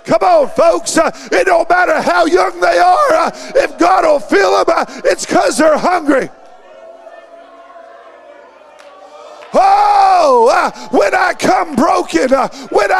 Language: English